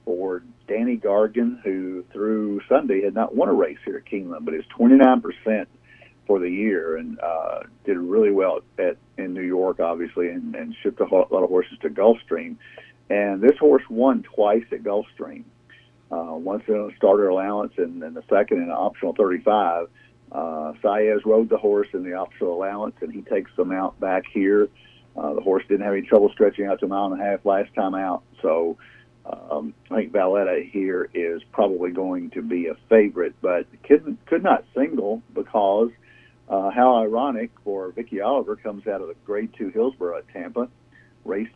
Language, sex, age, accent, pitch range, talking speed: English, male, 50-69, American, 95-140 Hz, 185 wpm